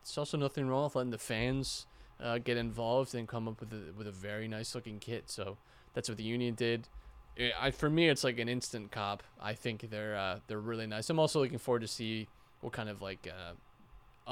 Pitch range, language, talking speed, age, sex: 105-130 Hz, English, 230 wpm, 20-39, male